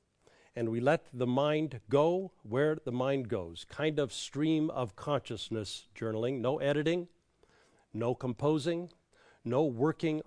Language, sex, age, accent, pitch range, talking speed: English, male, 50-69, American, 125-155 Hz, 130 wpm